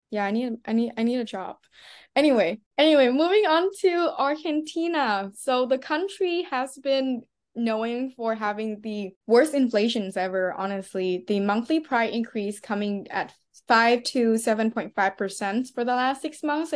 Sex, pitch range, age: female, 205-255 Hz, 10-29